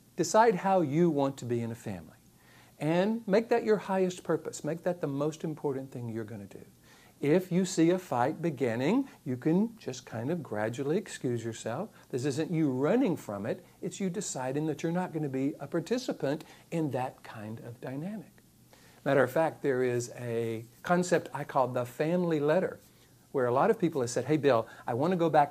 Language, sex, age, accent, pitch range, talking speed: English, male, 60-79, American, 120-170 Hz, 205 wpm